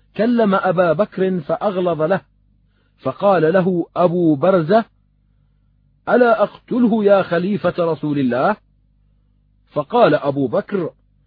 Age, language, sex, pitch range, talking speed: 40-59, Arabic, male, 135-200 Hz, 95 wpm